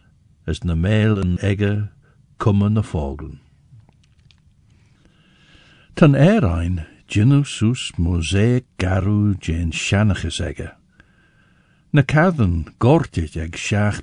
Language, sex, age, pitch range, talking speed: English, male, 60-79, 95-125 Hz, 105 wpm